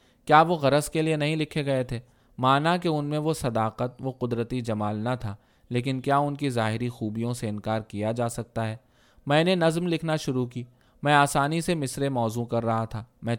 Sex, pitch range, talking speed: male, 115-145 Hz, 210 wpm